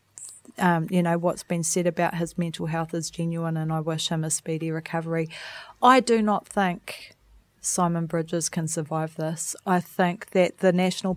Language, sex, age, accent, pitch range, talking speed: English, female, 30-49, Australian, 165-180 Hz, 175 wpm